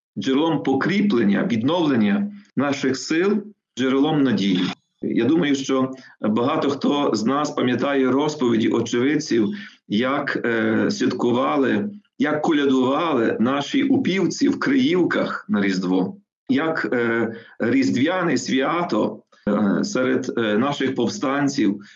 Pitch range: 130-210 Hz